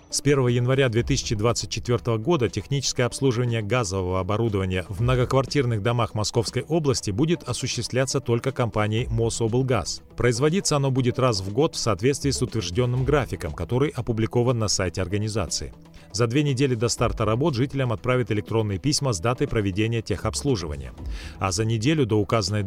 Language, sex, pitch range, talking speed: Russian, male, 110-135 Hz, 145 wpm